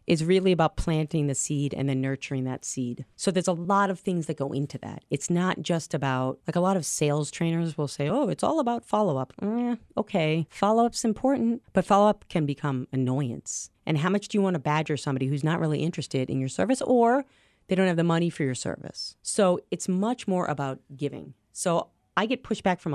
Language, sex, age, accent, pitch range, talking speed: English, female, 30-49, American, 145-195 Hz, 215 wpm